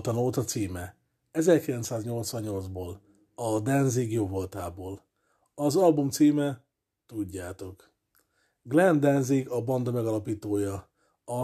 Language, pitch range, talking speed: Hungarian, 100-130 Hz, 85 wpm